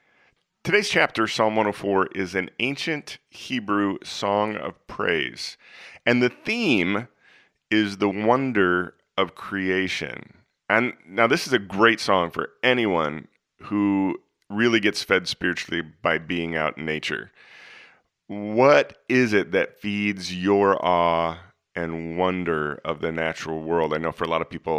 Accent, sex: American, male